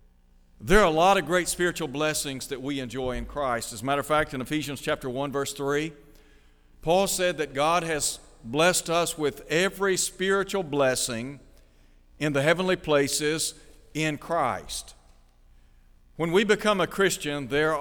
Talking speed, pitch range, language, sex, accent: 160 wpm, 100-165 Hz, English, male, American